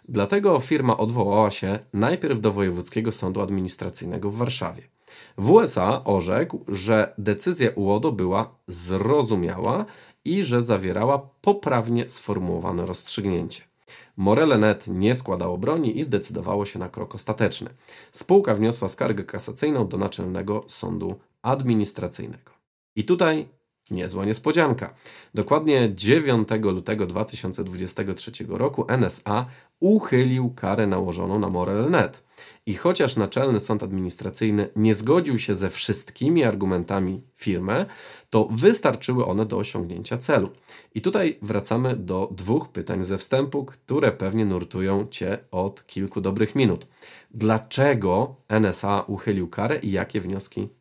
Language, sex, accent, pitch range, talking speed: Polish, male, native, 100-120 Hz, 115 wpm